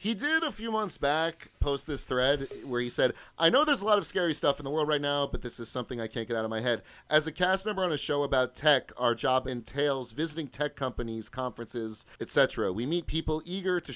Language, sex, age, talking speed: English, male, 30-49, 250 wpm